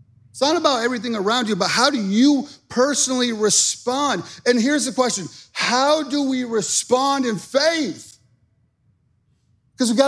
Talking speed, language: 150 wpm, English